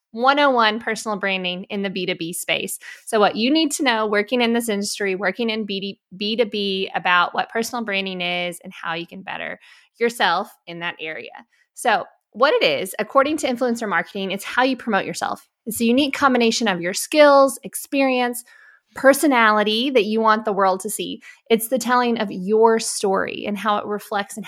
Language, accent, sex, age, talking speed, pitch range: English, American, female, 20-39, 180 wpm, 195-240 Hz